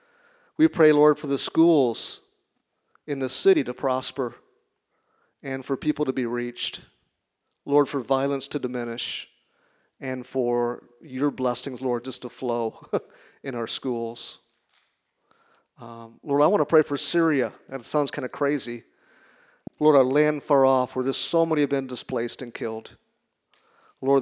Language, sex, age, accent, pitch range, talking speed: English, male, 50-69, American, 125-145 Hz, 150 wpm